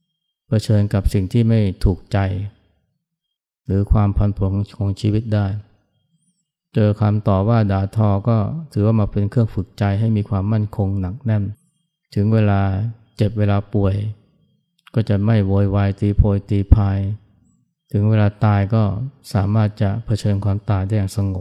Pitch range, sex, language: 100-115 Hz, male, Thai